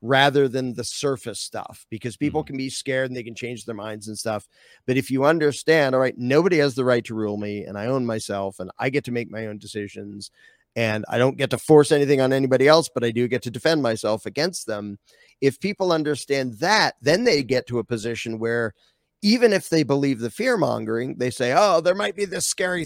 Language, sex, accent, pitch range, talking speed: English, male, American, 120-150 Hz, 230 wpm